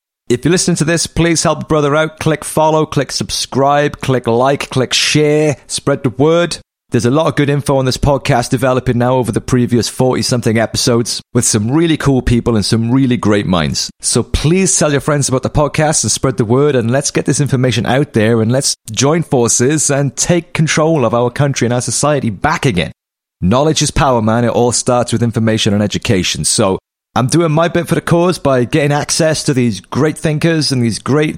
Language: English